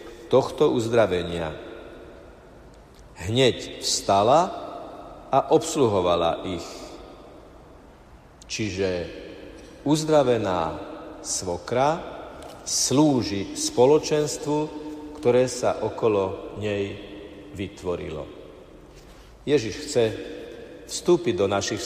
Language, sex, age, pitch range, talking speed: Slovak, male, 50-69, 105-145 Hz, 60 wpm